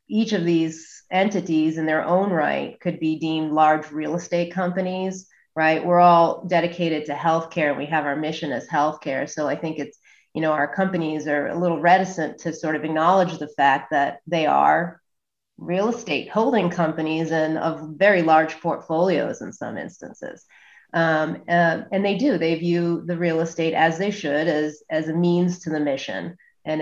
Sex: female